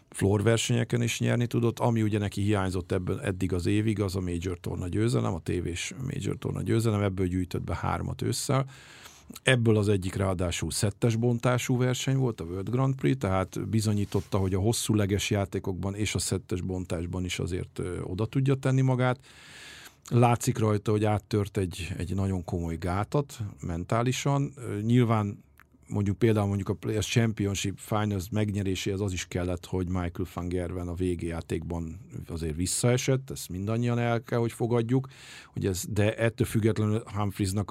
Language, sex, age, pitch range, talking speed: English, male, 50-69, 95-115 Hz, 150 wpm